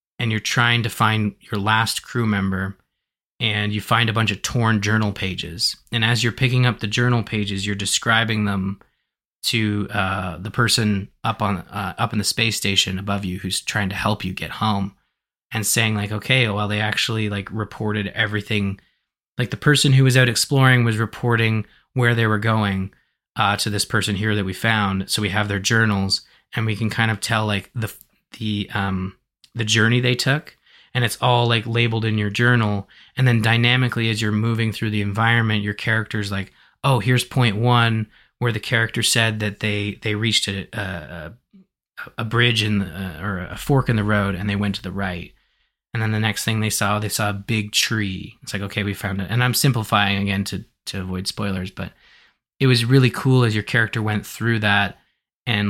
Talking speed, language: 205 wpm, English